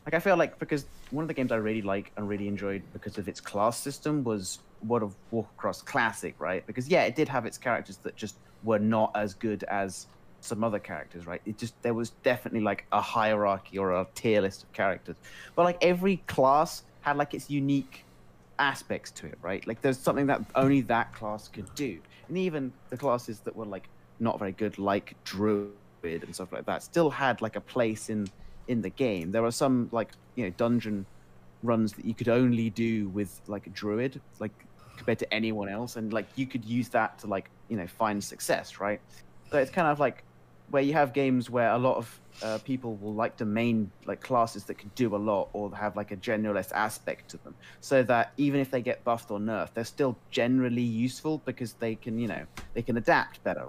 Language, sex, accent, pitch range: English, male, British, 100-125 Hz